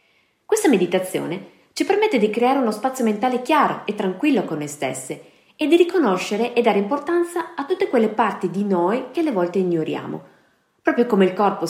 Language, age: Italian, 20-39